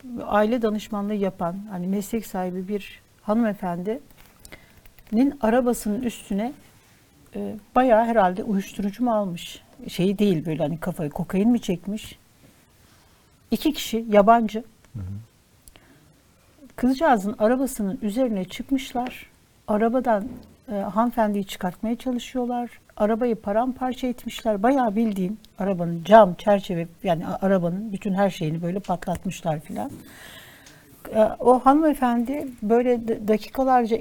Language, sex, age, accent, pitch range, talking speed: Turkish, female, 60-79, native, 195-235 Hz, 95 wpm